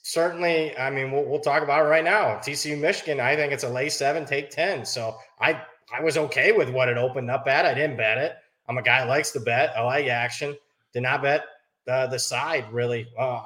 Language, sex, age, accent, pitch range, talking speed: English, male, 20-39, American, 115-145 Hz, 230 wpm